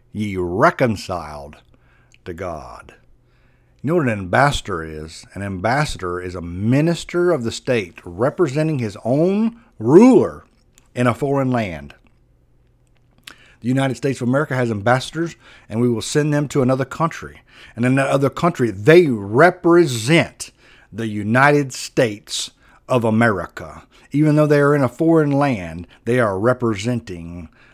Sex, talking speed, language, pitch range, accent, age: male, 140 wpm, English, 110-140 Hz, American, 60-79